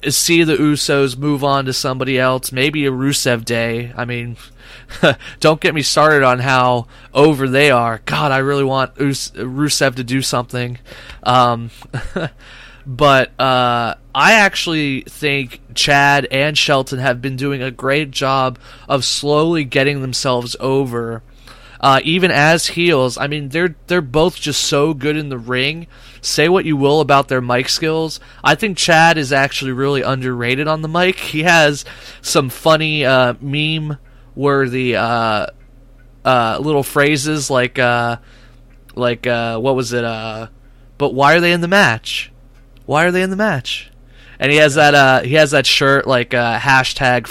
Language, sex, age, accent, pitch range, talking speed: English, male, 20-39, American, 125-145 Hz, 160 wpm